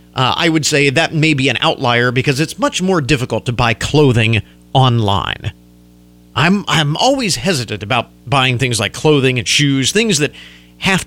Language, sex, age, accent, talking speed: English, male, 40-59, American, 175 wpm